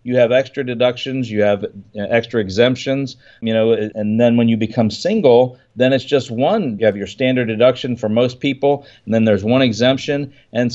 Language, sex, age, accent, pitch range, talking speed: English, male, 40-59, American, 115-135 Hz, 190 wpm